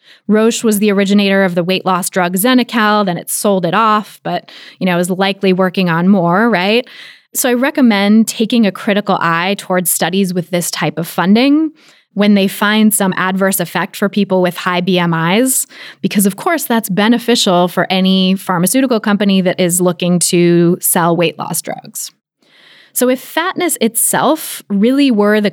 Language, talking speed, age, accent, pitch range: English, 170 wpm, 20-39, American, 185-230 Hz